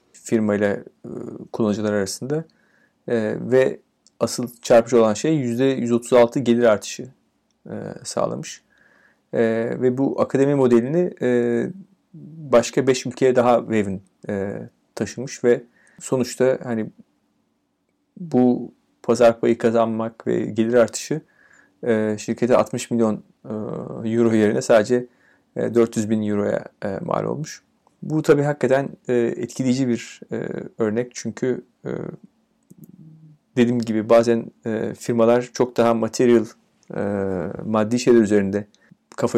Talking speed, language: 110 wpm, Turkish